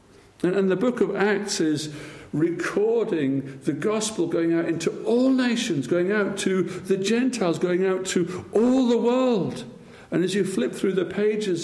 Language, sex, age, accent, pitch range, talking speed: English, male, 60-79, British, 125-200 Hz, 165 wpm